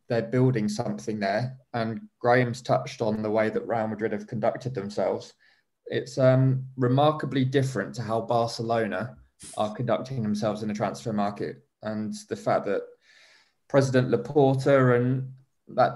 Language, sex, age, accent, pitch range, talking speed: English, male, 20-39, British, 110-130 Hz, 145 wpm